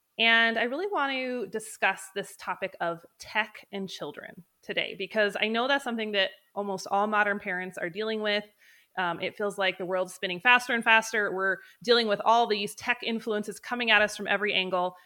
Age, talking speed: 20-39, 195 wpm